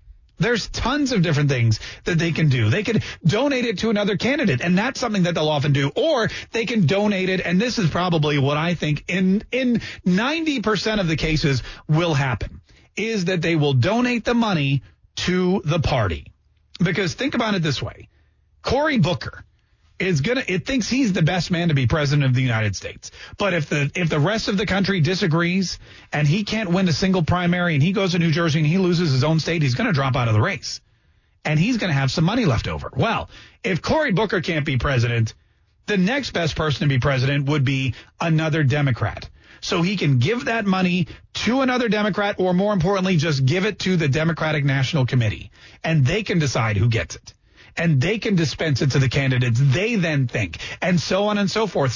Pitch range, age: 135-205 Hz, 40-59